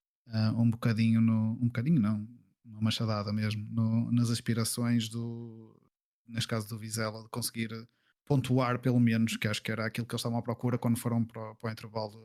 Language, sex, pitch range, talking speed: Portuguese, male, 115-125 Hz, 190 wpm